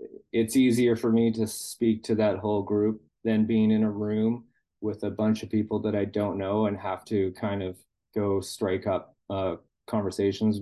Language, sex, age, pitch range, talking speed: English, male, 30-49, 95-110 Hz, 190 wpm